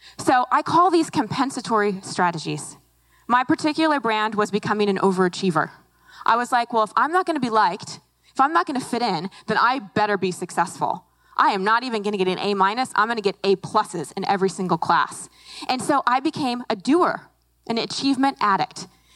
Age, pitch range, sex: 20-39, 195-275 Hz, female